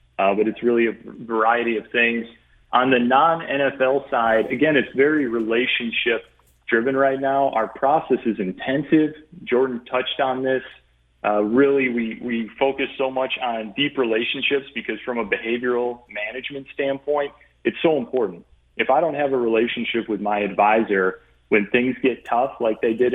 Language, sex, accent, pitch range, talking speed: English, male, American, 110-135 Hz, 160 wpm